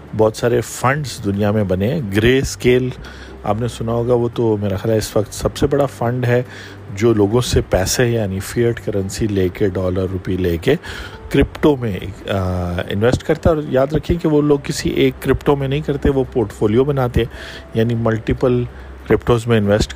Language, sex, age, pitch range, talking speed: Urdu, male, 50-69, 100-120 Hz, 190 wpm